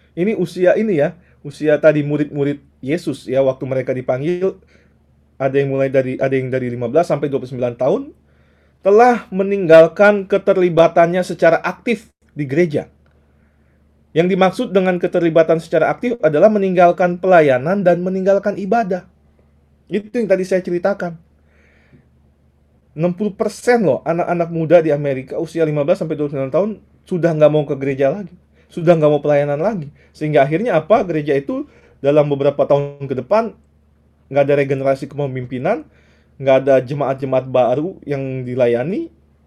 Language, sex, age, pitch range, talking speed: Indonesian, male, 30-49, 130-180 Hz, 135 wpm